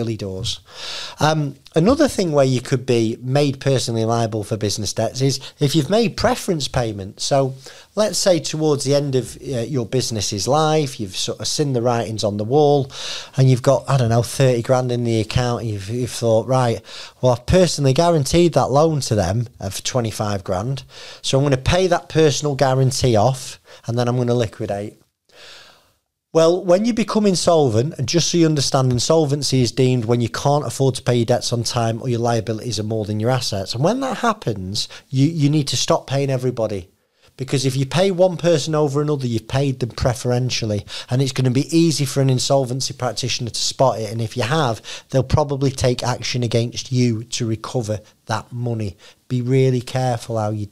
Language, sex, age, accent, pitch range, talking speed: English, male, 40-59, British, 115-145 Hz, 200 wpm